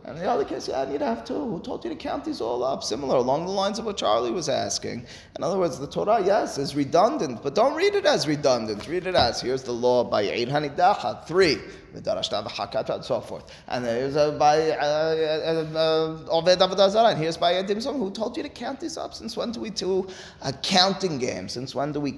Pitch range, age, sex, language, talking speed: 130-180 Hz, 20-39, male, English, 225 wpm